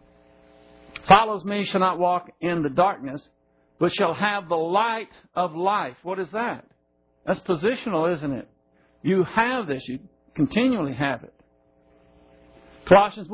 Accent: American